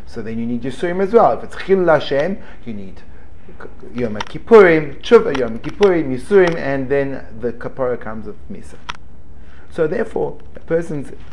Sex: male